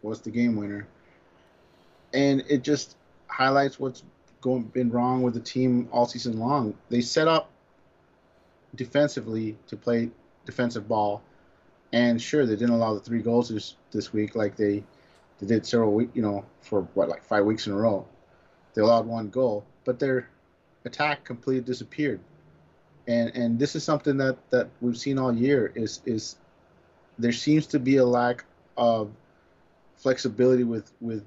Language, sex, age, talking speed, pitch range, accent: English, male, 30-49, 165 wpm, 110-135 Hz, American